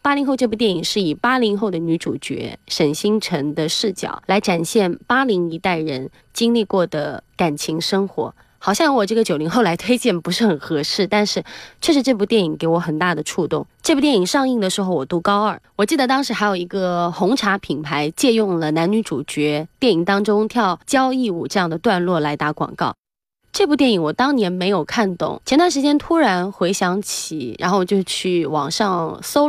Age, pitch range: 20-39, 165-220 Hz